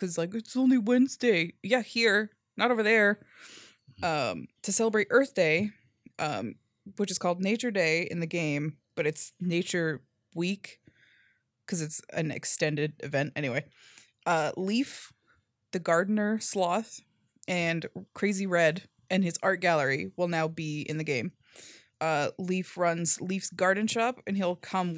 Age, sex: 20-39, female